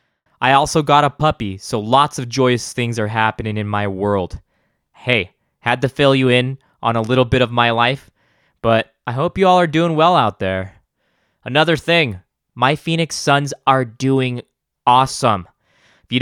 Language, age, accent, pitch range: English, 20-39, American, 115-140 Hz